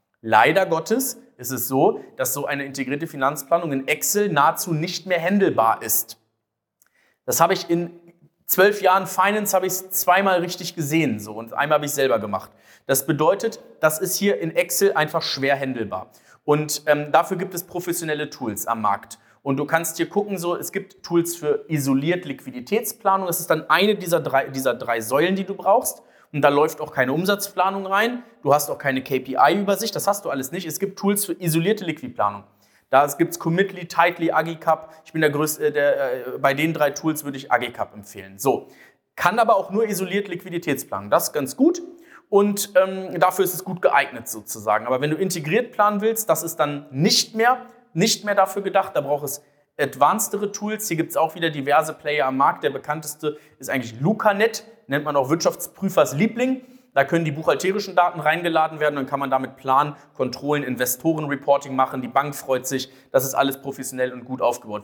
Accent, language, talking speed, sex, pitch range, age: German, German, 190 wpm, male, 140-195 Hz, 30-49